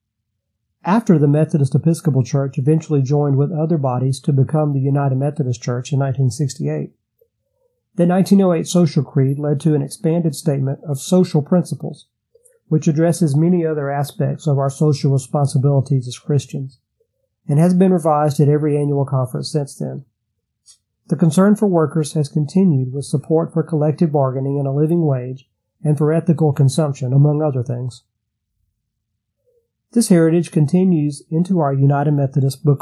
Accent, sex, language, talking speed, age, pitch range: American, male, English, 150 wpm, 50-69, 135-165 Hz